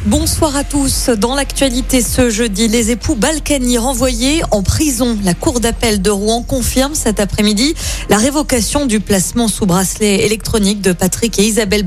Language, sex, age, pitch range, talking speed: French, female, 30-49, 190-250 Hz, 160 wpm